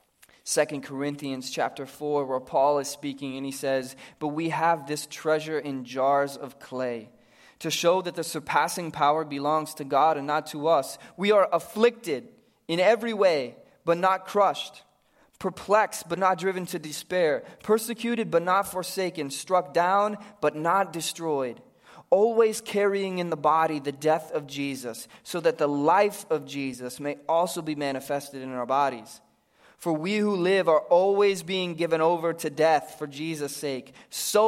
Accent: American